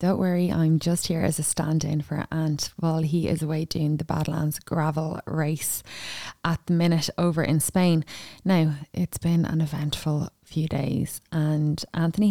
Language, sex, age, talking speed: English, female, 20-39, 165 wpm